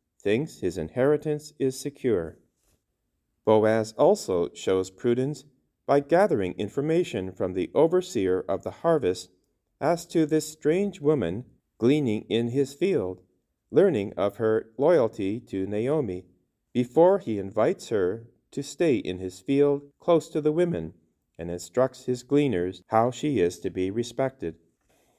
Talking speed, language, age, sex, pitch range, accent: 135 wpm, English, 40-59, male, 95-140 Hz, American